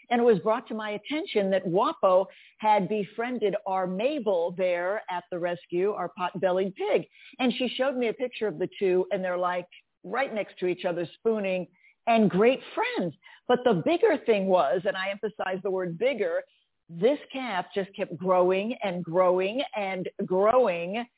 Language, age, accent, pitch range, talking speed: English, 50-69, American, 185-230 Hz, 175 wpm